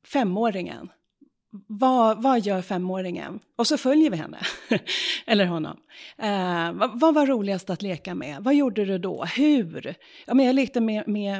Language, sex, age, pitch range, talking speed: English, female, 30-49, 185-250 Hz, 160 wpm